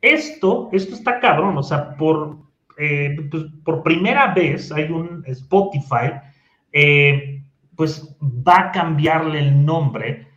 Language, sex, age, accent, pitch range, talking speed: Spanish, male, 30-49, Mexican, 135-165 Hz, 115 wpm